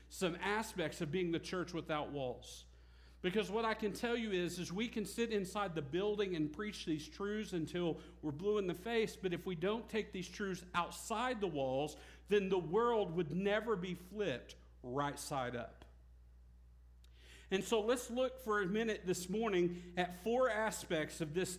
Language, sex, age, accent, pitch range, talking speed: English, male, 50-69, American, 155-210 Hz, 185 wpm